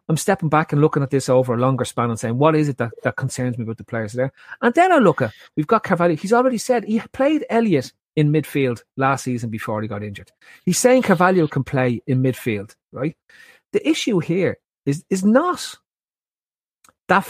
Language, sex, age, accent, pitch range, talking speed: English, male, 30-49, Irish, 120-190 Hz, 210 wpm